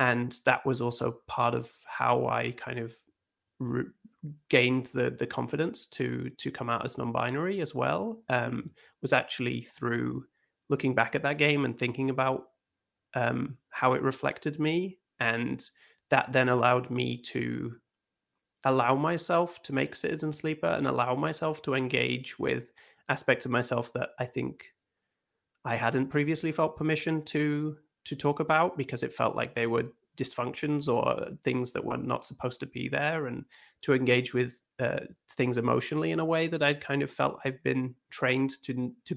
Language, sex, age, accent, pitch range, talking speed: English, male, 30-49, British, 125-150 Hz, 165 wpm